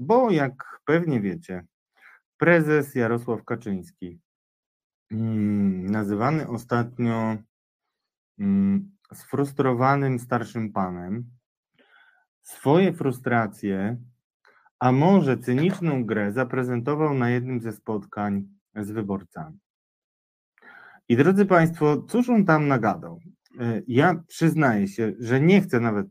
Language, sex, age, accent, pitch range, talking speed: Polish, male, 30-49, native, 110-150 Hz, 90 wpm